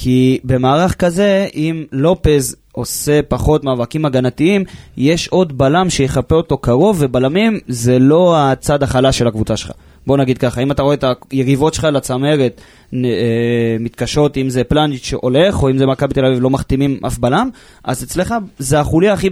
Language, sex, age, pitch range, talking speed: Hebrew, male, 20-39, 120-160 Hz, 170 wpm